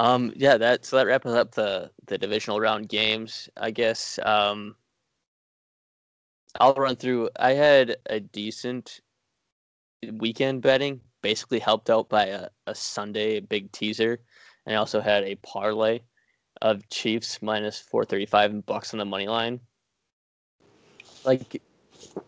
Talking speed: 140 wpm